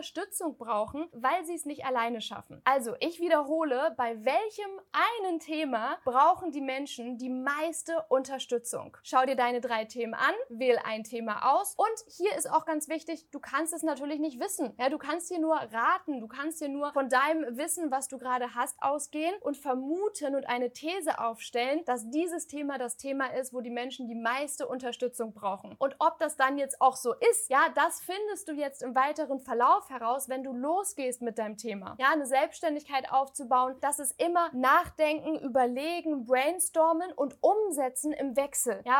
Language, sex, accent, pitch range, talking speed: German, female, German, 255-315 Hz, 180 wpm